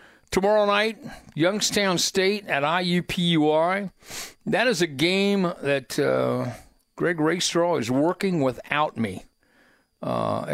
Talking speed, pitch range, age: 110 wpm, 130-170 Hz, 60-79